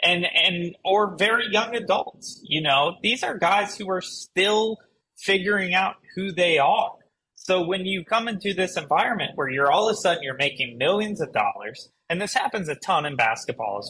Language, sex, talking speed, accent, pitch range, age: English, male, 195 wpm, American, 140-200 Hz, 30-49